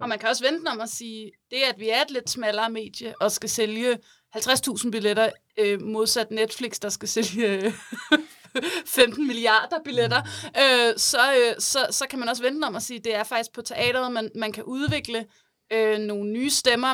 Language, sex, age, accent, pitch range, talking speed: Danish, female, 30-49, native, 215-245 Hz, 180 wpm